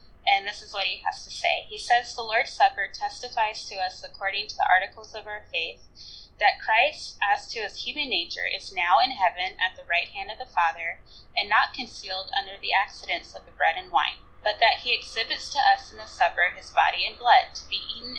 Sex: female